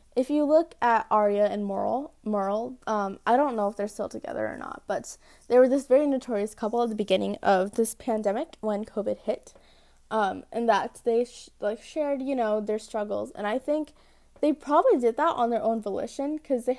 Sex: female